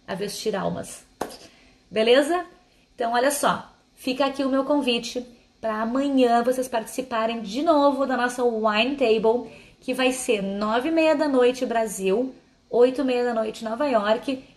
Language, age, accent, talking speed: Portuguese, 20-39, Brazilian, 150 wpm